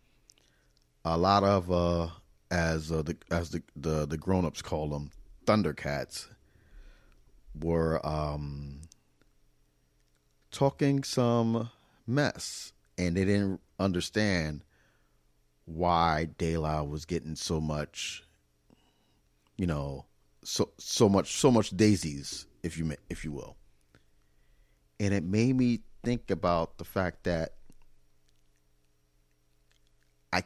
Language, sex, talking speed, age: English, male, 105 wpm, 40-59